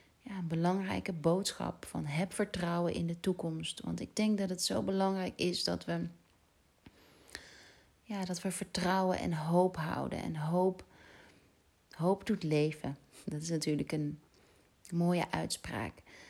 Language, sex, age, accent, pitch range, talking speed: Dutch, female, 30-49, Dutch, 155-185 Hz, 130 wpm